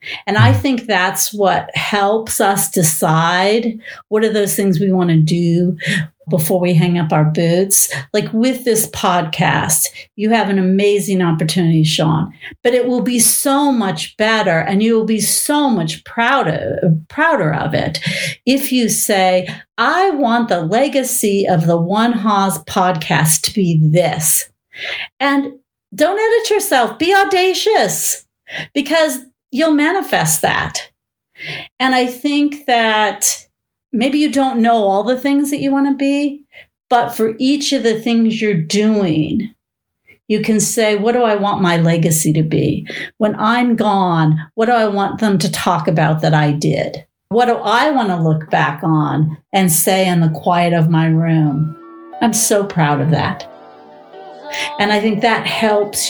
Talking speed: 160 wpm